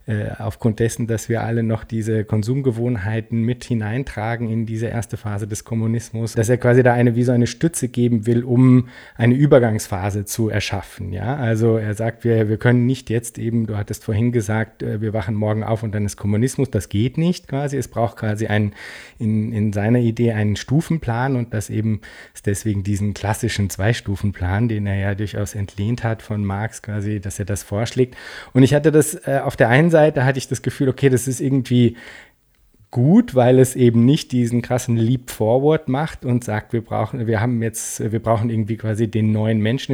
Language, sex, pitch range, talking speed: German, male, 110-125 Hz, 195 wpm